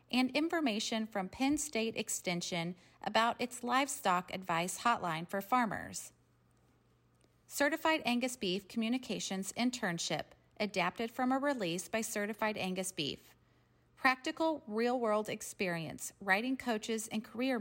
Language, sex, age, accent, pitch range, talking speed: English, female, 30-49, American, 190-255 Hz, 110 wpm